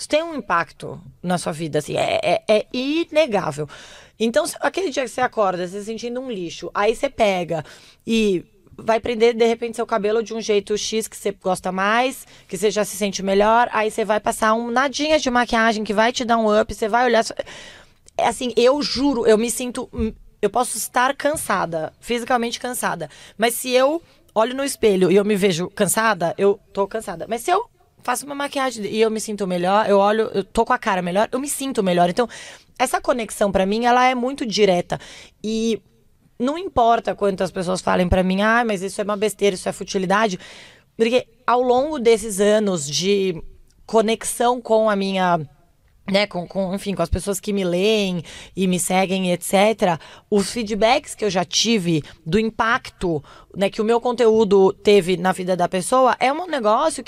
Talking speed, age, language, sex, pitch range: 190 wpm, 20-39, Portuguese, female, 195-240 Hz